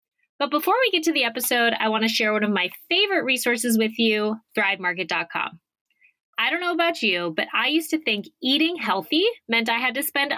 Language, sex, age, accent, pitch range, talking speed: English, female, 20-39, American, 200-315 Hz, 210 wpm